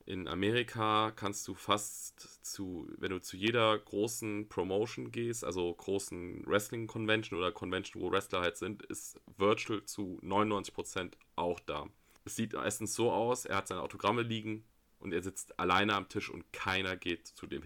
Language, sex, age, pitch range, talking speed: German, male, 30-49, 95-110 Hz, 170 wpm